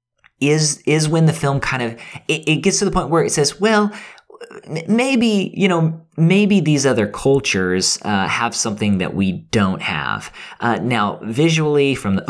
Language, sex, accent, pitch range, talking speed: English, male, American, 110-150 Hz, 175 wpm